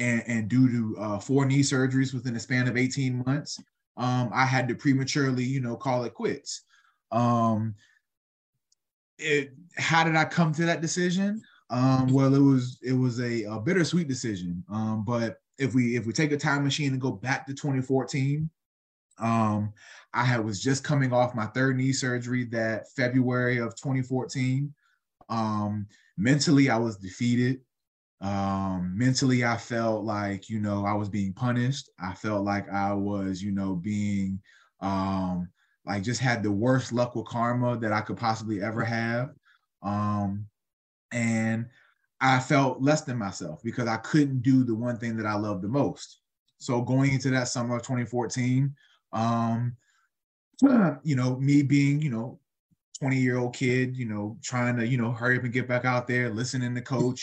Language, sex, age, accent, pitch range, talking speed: English, male, 20-39, American, 110-135 Hz, 175 wpm